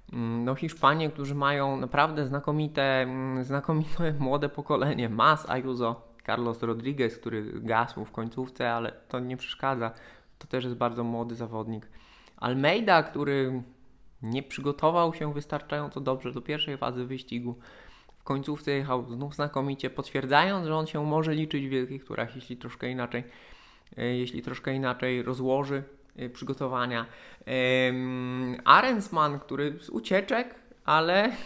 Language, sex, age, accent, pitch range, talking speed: Polish, male, 20-39, native, 125-155 Hz, 120 wpm